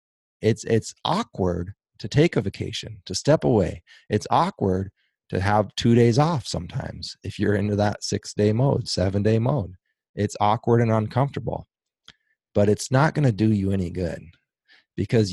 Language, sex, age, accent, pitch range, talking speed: English, male, 30-49, American, 100-135 Hz, 155 wpm